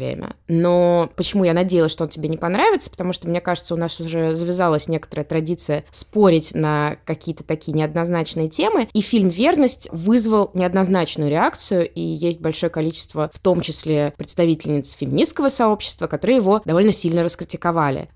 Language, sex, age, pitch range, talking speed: Russian, female, 20-39, 155-190 Hz, 150 wpm